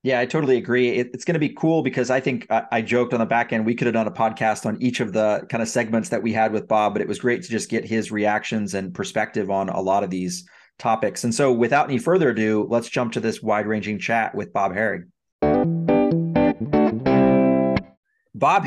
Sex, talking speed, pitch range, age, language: male, 225 wpm, 115-140 Hz, 30-49, English